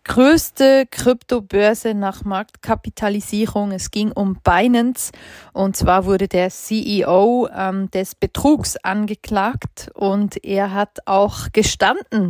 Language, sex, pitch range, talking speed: German, female, 195-235 Hz, 105 wpm